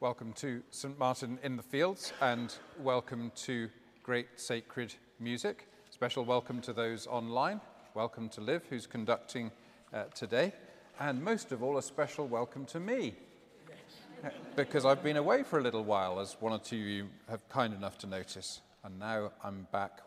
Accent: British